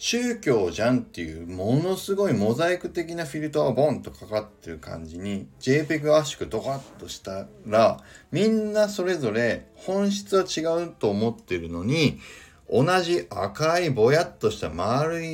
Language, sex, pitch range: Japanese, male, 125-185 Hz